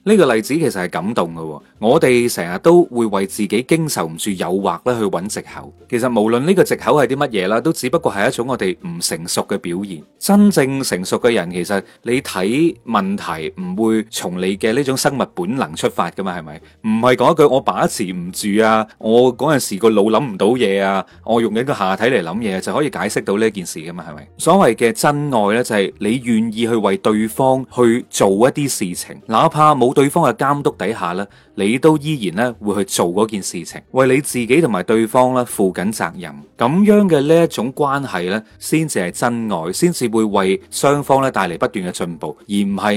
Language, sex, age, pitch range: Chinese, male, 30-49, 100-150 Hz